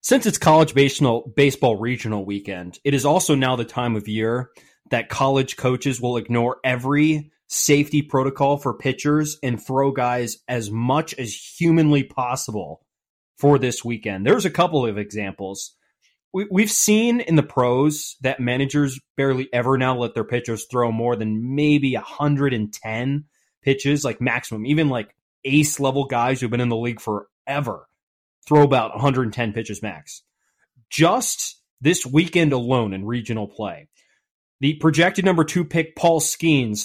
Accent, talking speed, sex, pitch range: American, 150 wpm, male, 120-150 Hz